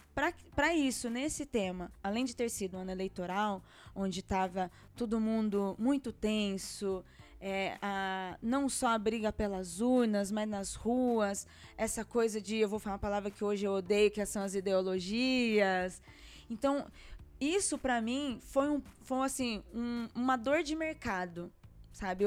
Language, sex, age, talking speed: Portuguese, female, 20-39, 155 wpm